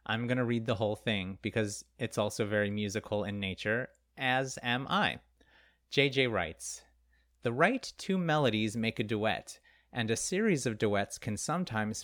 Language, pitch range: English, 110-150 Hz